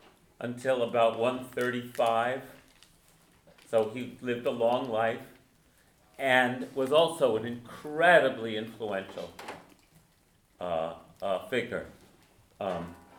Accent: American